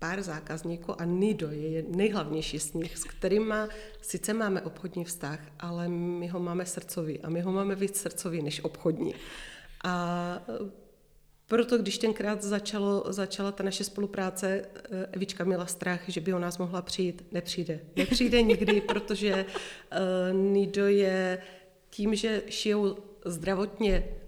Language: Czech